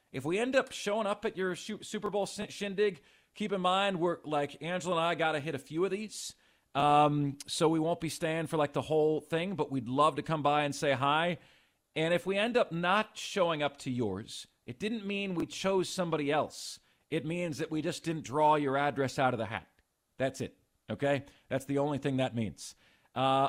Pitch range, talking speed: 140-185 Hz, 220 wpm